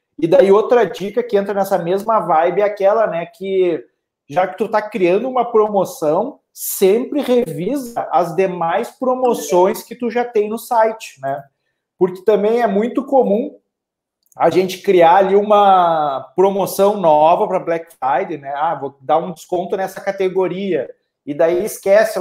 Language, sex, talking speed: Portuguese, male, 155 wpm